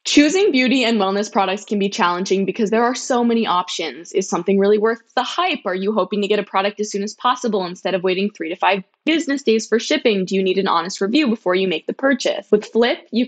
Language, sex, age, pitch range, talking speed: English, female, 20-39, 190-235 Hz, 250 wpm